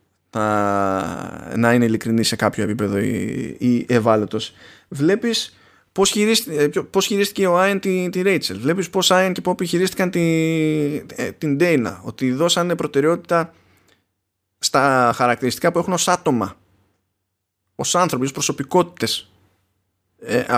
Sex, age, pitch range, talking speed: male, 20-39, 115-185 Hz, 115 wpm